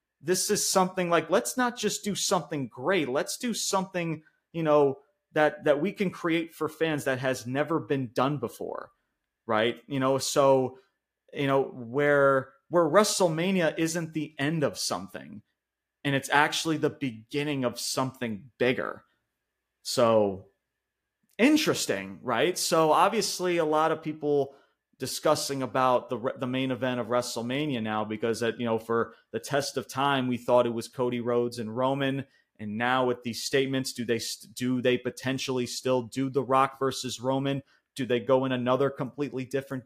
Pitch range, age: 125-160 Hz, 30-49